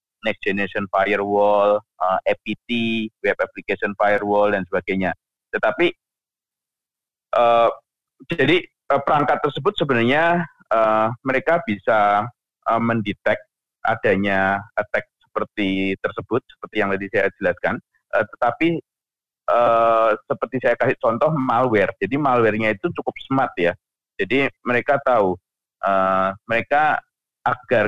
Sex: male